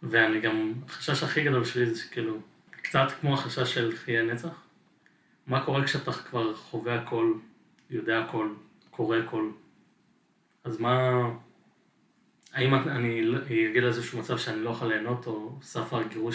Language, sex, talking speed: Hebrew, male, 150 wpm